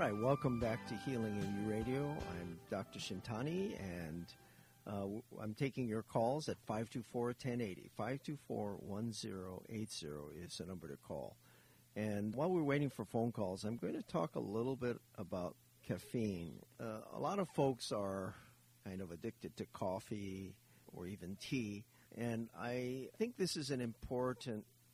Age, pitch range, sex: 50-69, 100-125 Hz, male